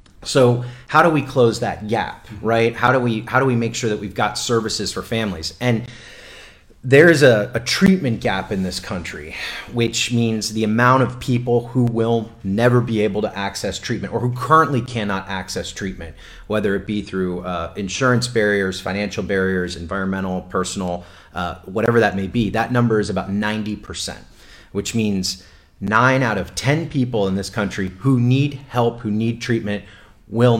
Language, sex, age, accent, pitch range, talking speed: English, male, 30-49, American, 95-125 Hz, 175 wpm